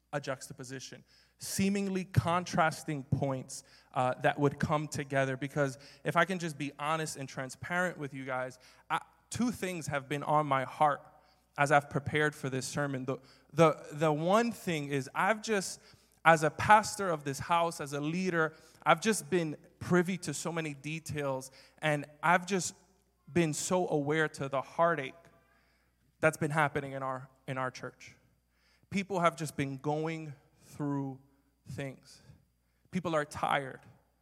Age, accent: 20-39, American